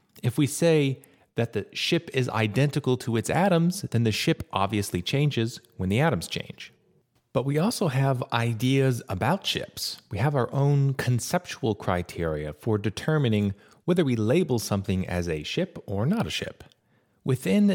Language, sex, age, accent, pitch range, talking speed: English, male, 30-49, American, 100-140 Hz, 160 wpm